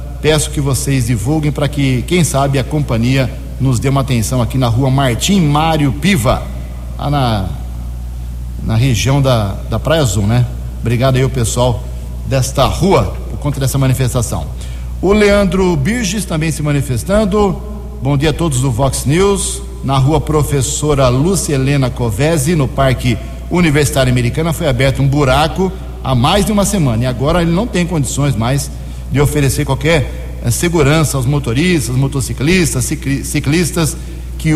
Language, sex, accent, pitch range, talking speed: Portuguese, male, Brazilian, 120-155 Hz, 155 wpm